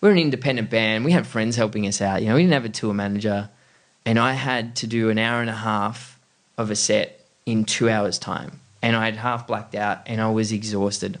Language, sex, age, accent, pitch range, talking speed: English, male, 20-39, Australian, 110-130 Hz, 240 wpm